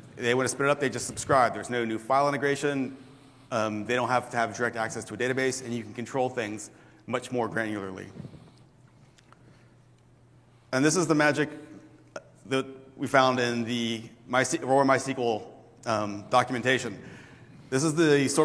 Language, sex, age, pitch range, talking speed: English, male, 30-49, 115-135 Hz, 170 wpm